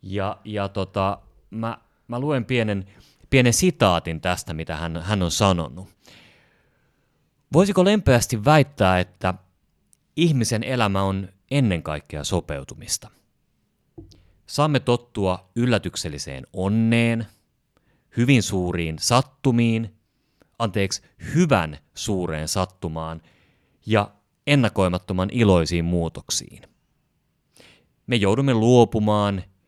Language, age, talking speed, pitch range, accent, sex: Finnish, 30-49, 85 wpm, 90-125 Hz, native, male